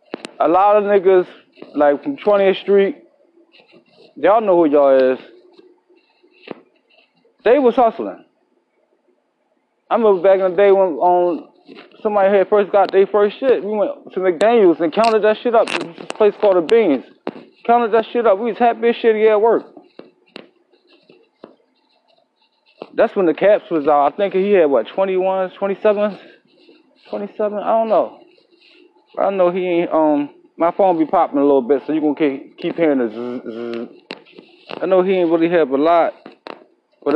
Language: English